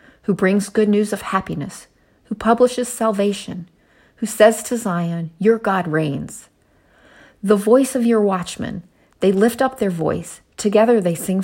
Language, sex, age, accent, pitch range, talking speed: English, female, 40-59, American, 175-220 Hz, 150 wpm